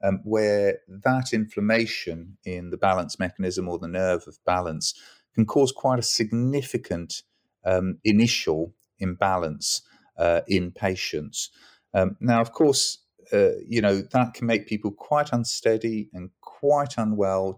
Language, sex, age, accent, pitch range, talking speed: English, male, 40-59, British, 95-115 Hz, 135 wpm